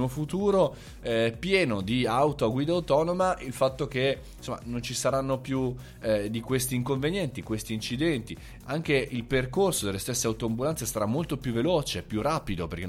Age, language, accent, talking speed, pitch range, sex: 20-39, Italian, native, 165 wpm, 105-140 Hz, male